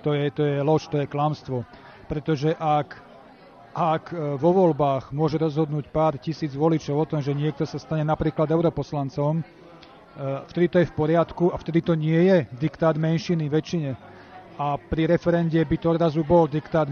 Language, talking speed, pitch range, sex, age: Slovak, 165 wpm, 145-165 Hz, male, 40-59